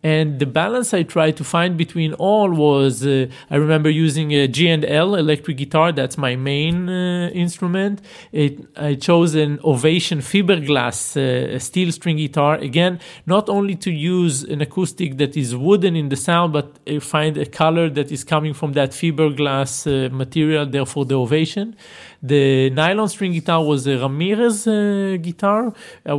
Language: English